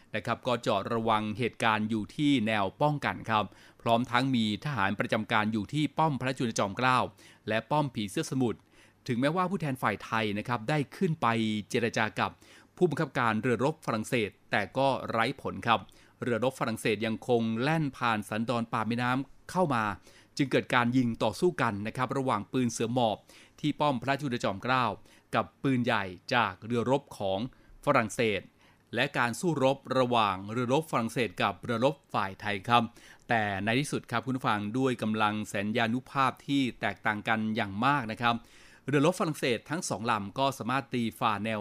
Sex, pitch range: male, 110-135 Hz